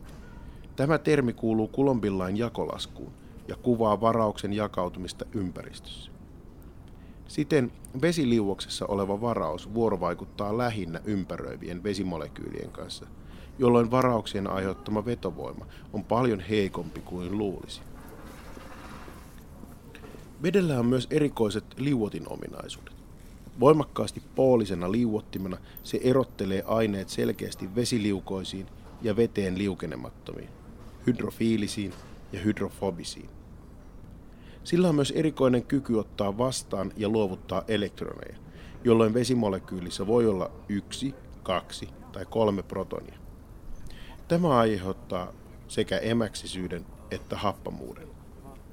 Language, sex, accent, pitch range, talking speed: Finnish, male, native, 90-115 Hz, 90 wpm